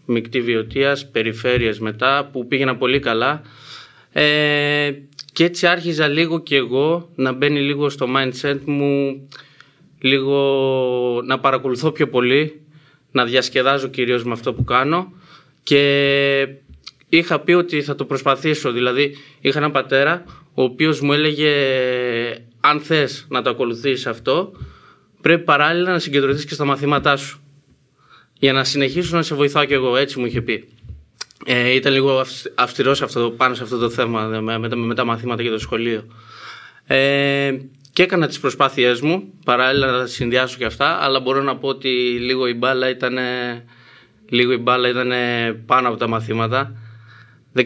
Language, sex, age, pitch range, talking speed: Greek, male, 20-39, 125-145 Hz, 145 wpm